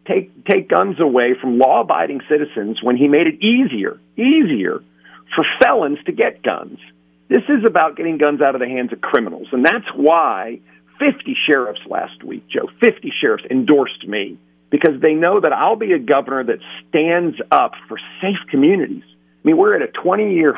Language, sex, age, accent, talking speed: English, male, 50-69, American, 180 wpm